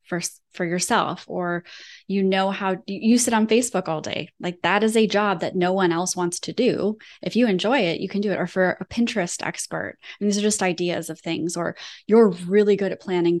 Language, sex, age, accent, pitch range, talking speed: English, female, 20-39, American, 170-210 Hz, 230 wpm